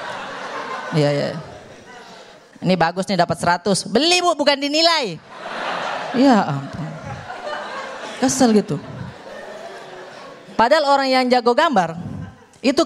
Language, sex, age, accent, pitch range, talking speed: Indonesian, female, 20-39, native, 190-260 Hz, 100 wpm